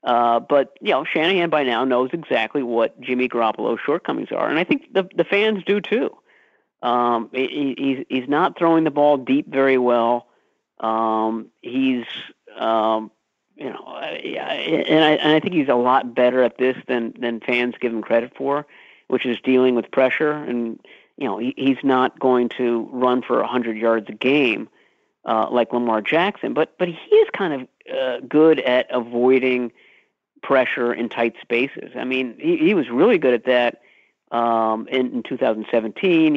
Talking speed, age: 180 wpm, 50-69